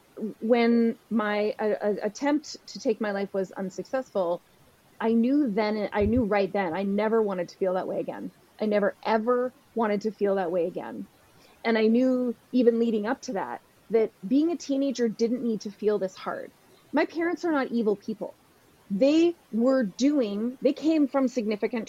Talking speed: 180 wpm